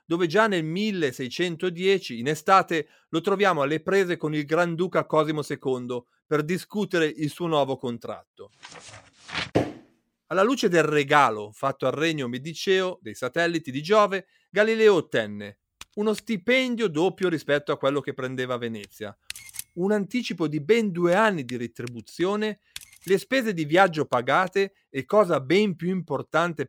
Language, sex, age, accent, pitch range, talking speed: Italian, male, 40-59, native, 130-200 Hz, 140 wpm